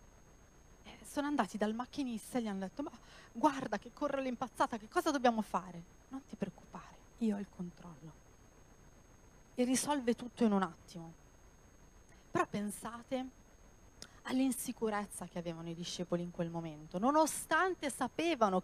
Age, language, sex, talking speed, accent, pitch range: 30-49, Italian, female, 135 wpm, native, 180-240 Hz